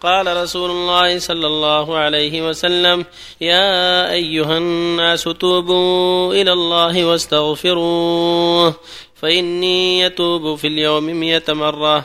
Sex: male